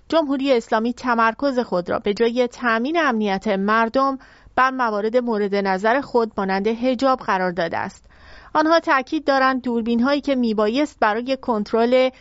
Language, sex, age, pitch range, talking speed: English, female, 30-49, 215-270 Hz, 150 wpm